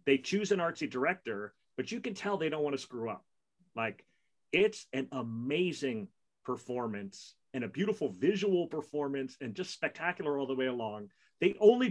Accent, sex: American, male